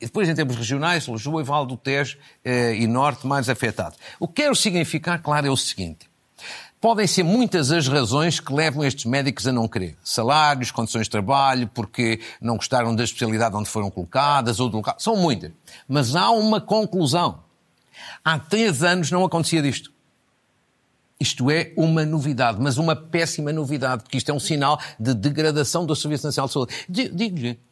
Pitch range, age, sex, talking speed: 125-180 Hz, 50-69, male, 180 wpm